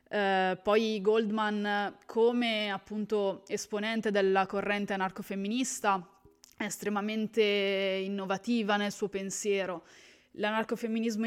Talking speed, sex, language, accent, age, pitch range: 85 wpm, female, Italian, native, 20-39, 190-220 Hz